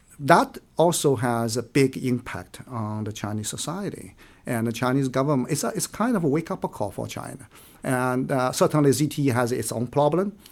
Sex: male